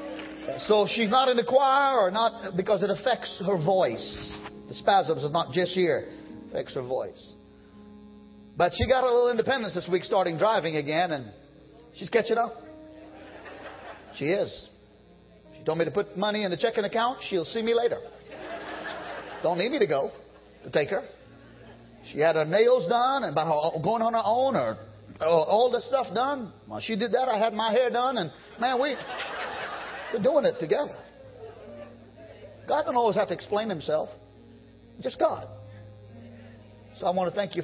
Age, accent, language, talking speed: 40-59, American, English, 175 wpm